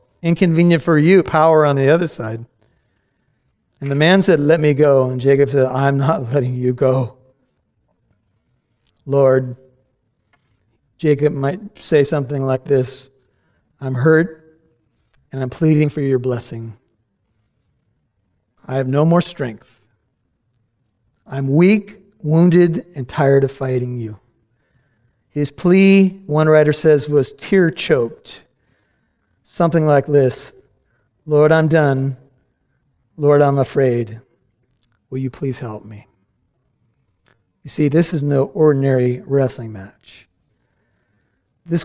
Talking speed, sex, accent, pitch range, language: 120 wpm, male, American, 120-155 Hz, English